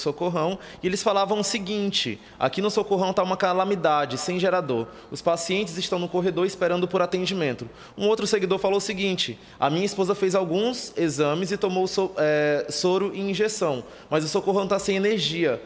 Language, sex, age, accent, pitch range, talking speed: Portuguese, male, 20-39, Brazilian, 160-200 Hz, 180 wpm